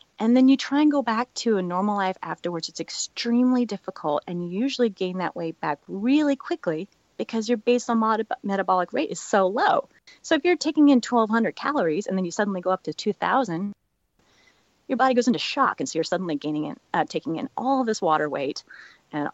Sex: female